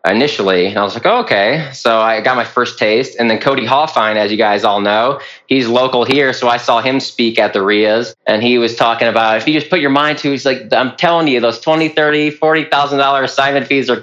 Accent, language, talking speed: American, English, 250 wpm